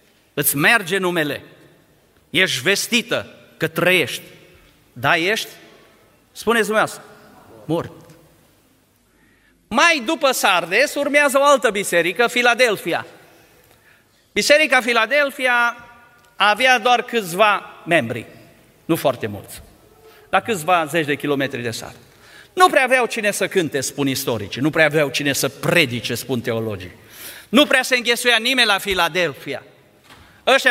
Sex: male